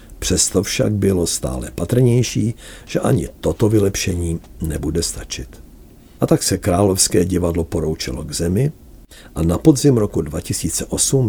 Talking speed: 130 wpm